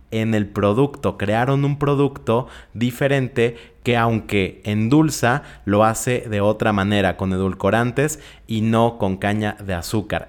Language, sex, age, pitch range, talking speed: Spanish, male, 30-49, 100-125 Hz, 135 wpm